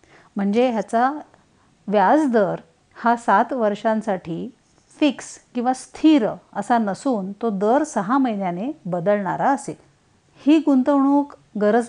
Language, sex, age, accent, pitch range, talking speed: Marathi, female, 50-69, native, 195-245 Hz, 100 wpm